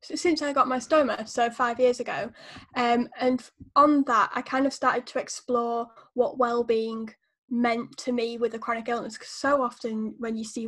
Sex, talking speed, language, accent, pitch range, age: female, 190 wpm, English, British, 225-255 Hz, 10-29